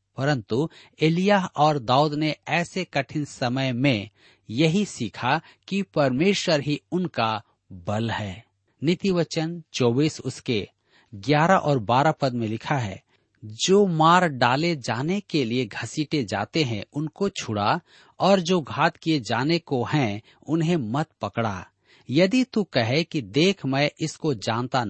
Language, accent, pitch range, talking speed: Hindi, native, 115-170 Hz, 135 wpm